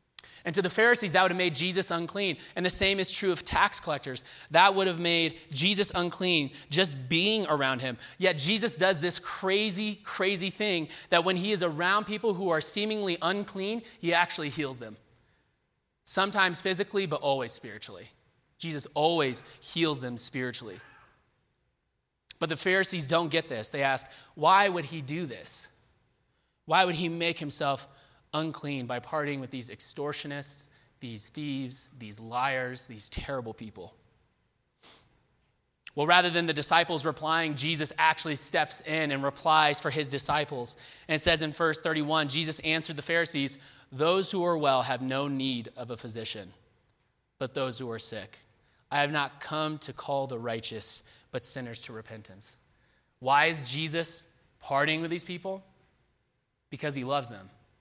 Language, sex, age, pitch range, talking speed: English, male, 30-49, 130-175 Hz, 160 wpm